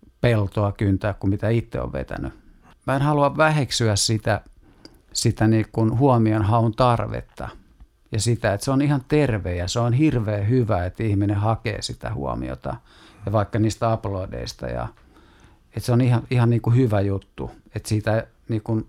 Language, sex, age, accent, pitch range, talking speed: Finnish, male, 50-69, native, 100-120 Hz, 160 wpm